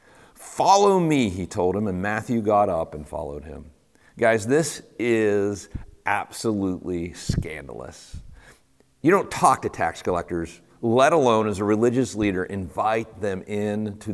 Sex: male